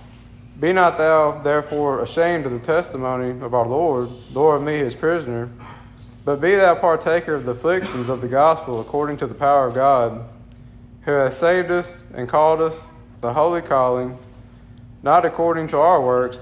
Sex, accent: male, American